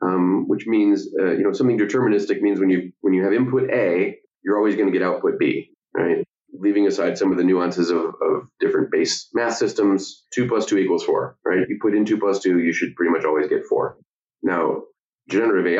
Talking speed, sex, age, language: 220 wpm, male, 30-49, English